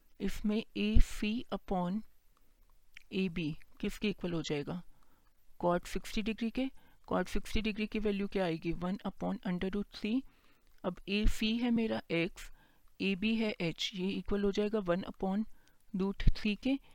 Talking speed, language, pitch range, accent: 155 wpm, Hindi, 185-220 Hz, native